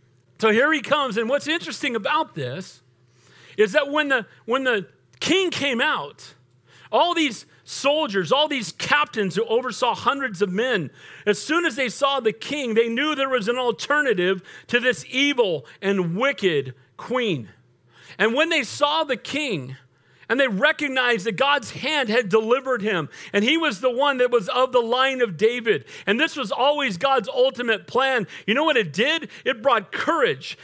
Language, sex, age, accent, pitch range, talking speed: English, male, 40-59, American, 200-280 Hz, 175 wpm